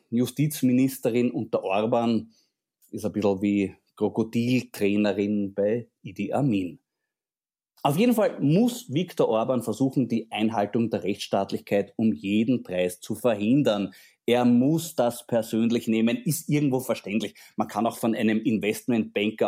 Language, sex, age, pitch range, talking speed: German, male, 30-49, 110-155 Hz, 125 wpm